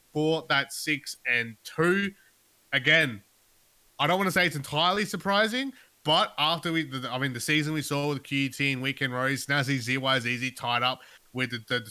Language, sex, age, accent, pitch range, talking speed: English, male, 20-39, Australian, 120-145 Hz, 180 wpm